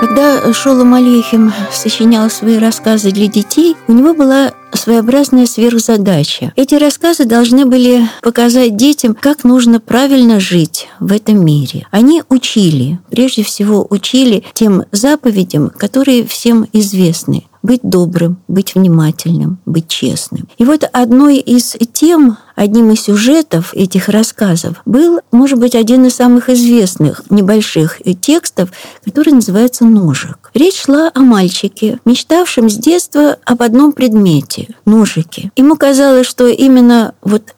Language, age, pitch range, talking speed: Russian, 50-69, 195-255 Hz, 130 wpm